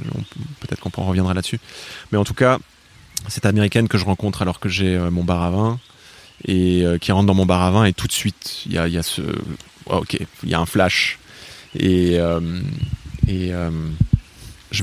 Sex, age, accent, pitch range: male, 20-39, French, 90-115 Hz